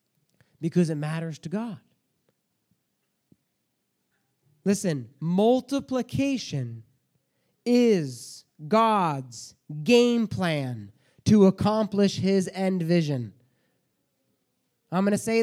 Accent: American